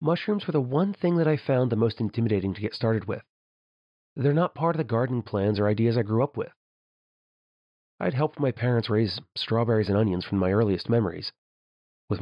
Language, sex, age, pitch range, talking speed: English, male, 30-49, 100-125 Hz, 200 wpm